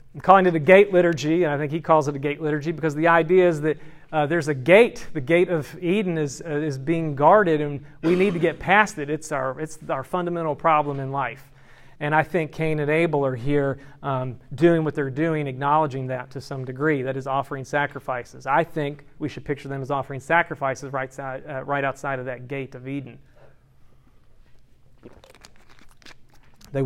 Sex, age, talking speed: male, 40-59, 200 wpm